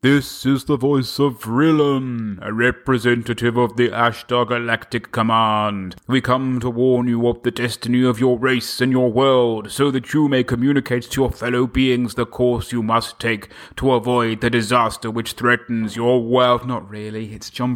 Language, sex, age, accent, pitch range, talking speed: English, male, 30-49, British, 110-155 Hz, 180 wpm